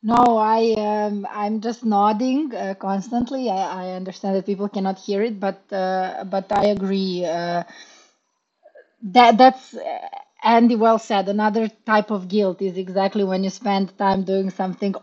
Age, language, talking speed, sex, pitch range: 30-49, English, 155 wpm, female, 195-235 Hz